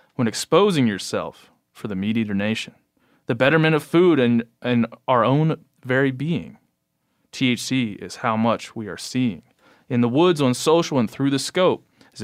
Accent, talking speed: American, 165 wpm